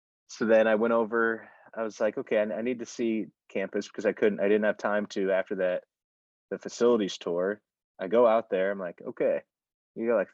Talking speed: 215 wpm